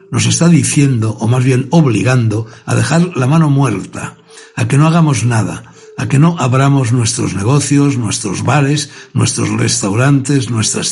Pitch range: 115-150 Hz